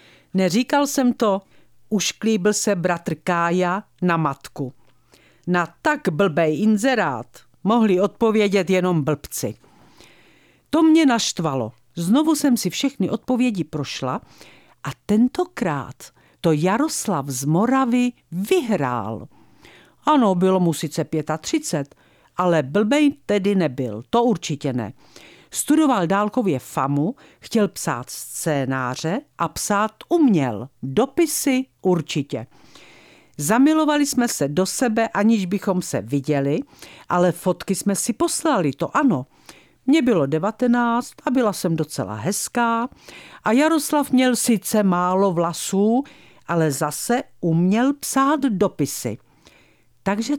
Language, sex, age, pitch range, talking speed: Czech, female, 50-69, 160-240 Hz, 110 wpm